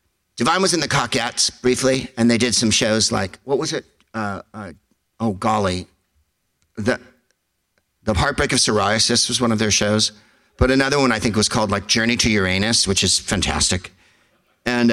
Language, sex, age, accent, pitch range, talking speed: English, male, 50-69, American, 100-120 Hz, 175 wpm